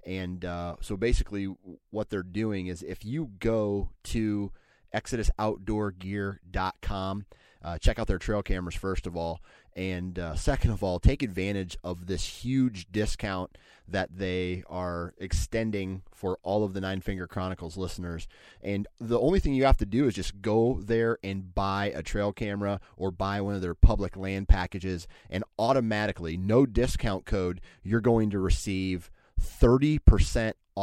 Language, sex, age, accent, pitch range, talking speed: English, male, 30-49, American, 90-105 Hz, 160 wpm